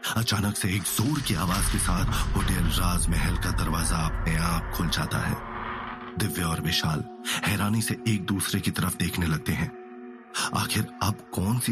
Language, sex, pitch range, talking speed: Hindi, male, 85-115 Hz, 50 wpm